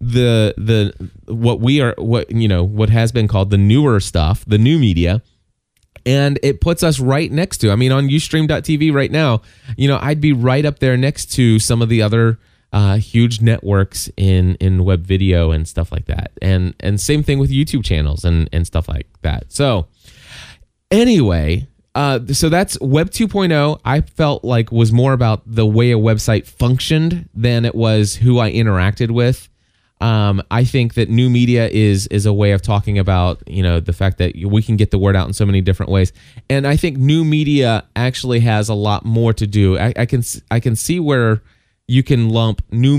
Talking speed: 200 wpm